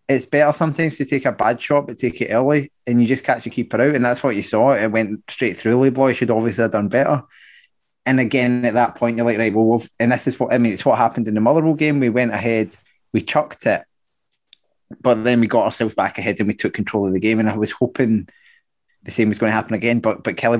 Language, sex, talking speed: English, male, 270 wpm